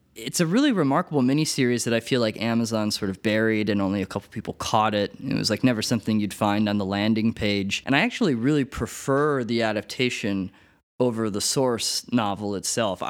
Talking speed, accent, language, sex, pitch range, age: 195 wpm, American, English, male, 105-130 Hz, 20-39